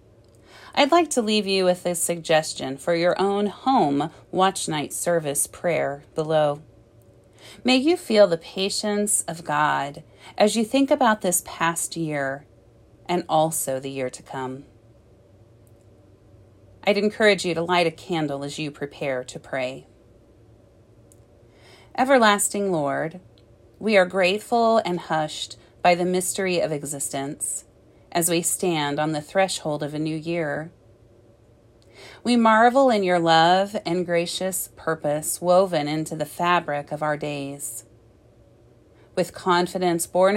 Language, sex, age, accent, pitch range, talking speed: English, female, 30-49, American, 115-180 Hz, 130 wpm